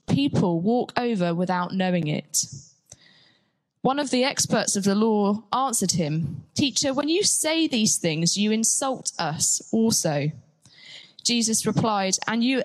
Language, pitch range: English, 170-235 Hz